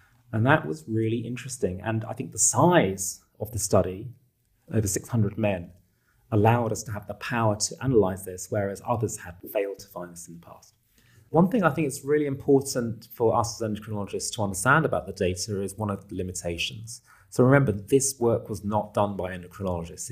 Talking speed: 195 wpm